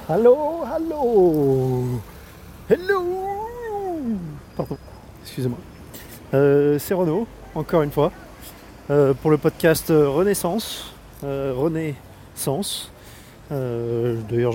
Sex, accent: male, French